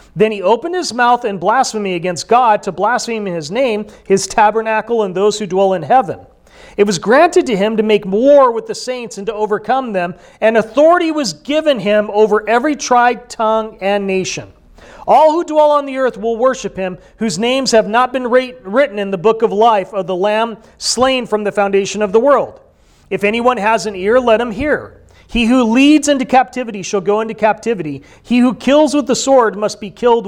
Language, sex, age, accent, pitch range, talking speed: English, male, 40-59, American, 200-255 Hz, 205 wpm